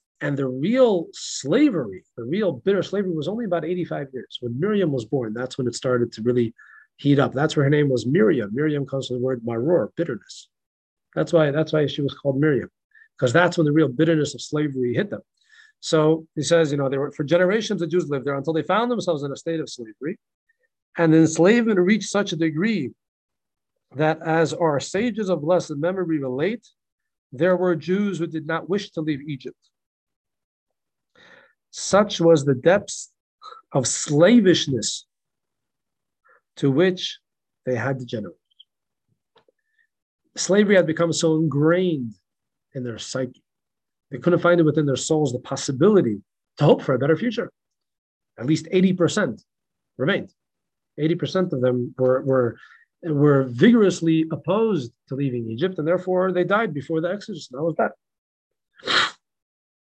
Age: 40-59